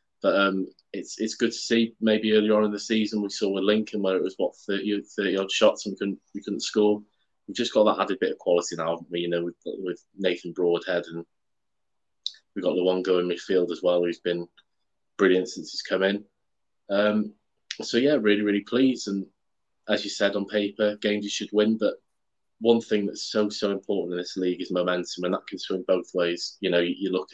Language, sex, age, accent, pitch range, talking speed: English, male, 20-39, British, 90-105 Hz, 225 wpm